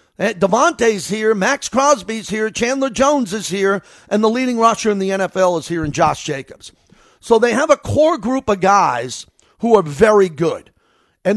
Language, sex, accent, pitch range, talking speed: English, male, American, 175-225 Hz, 180 wpm